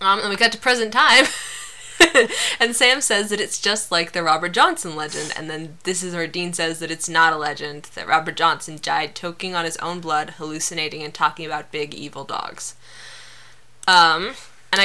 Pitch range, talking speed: 160-195 Hz, 195 wpm